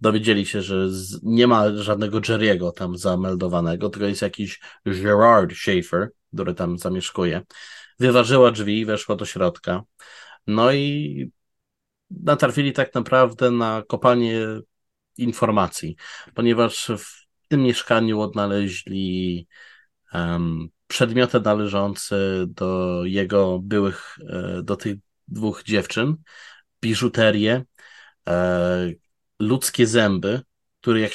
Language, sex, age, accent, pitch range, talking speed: Polish, male, 30-49, native, 100-120 Hz, 100 wpm